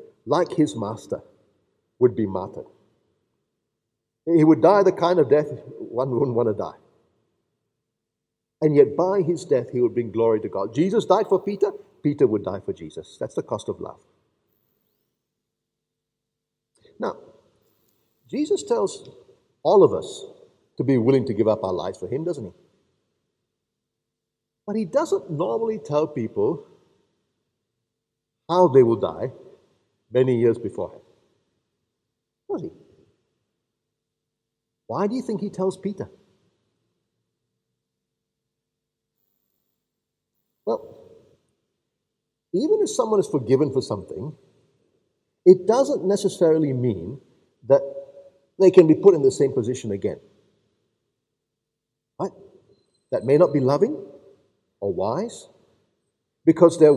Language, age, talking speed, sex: English, 50-69, 120 wpm, male